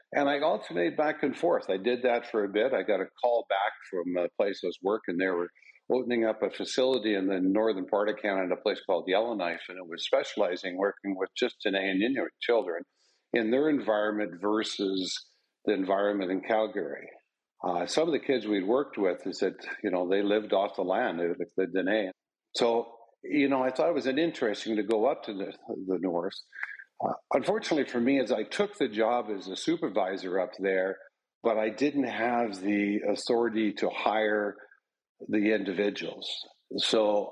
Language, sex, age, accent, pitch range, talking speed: English, male, 50-69, American, 95-120 Hz, 190 wpm